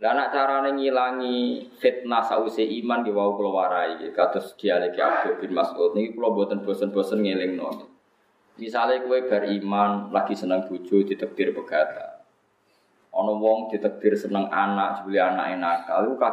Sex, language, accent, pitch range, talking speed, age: male, Indonesian, native, 100-140 Hz, 150 wpm, 20-39